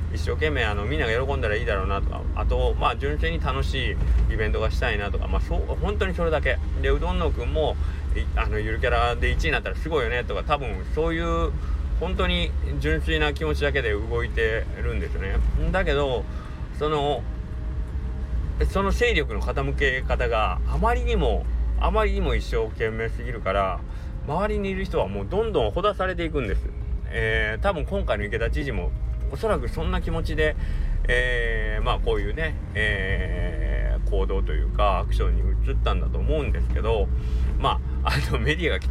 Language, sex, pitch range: Japanese, male, 70-85 Hz